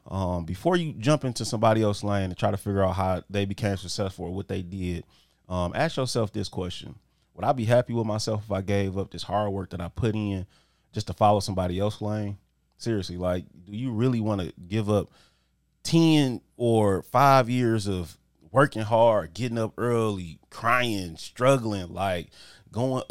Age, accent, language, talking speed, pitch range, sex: 30-49, American, English, 185 wpm, 95-120 Hz, male